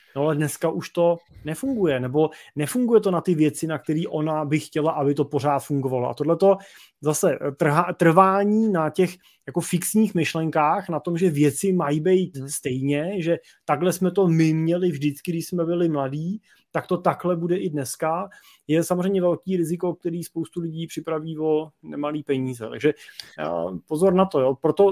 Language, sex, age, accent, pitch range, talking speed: Czech, male, 20-39, native, 150-180 Hz, 170 wpm